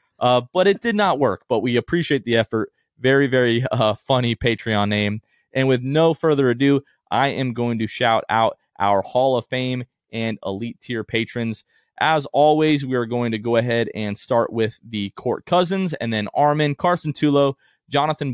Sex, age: male, 20-39